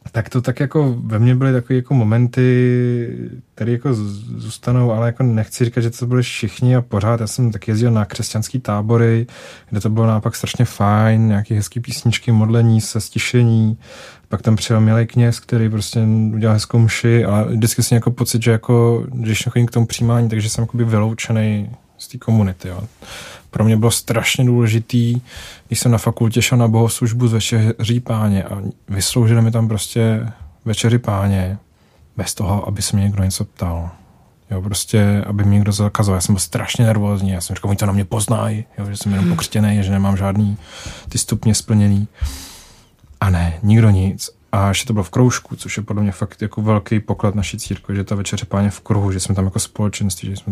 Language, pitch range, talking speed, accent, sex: Czech, 100-115 Hz, 195 wpm, native, male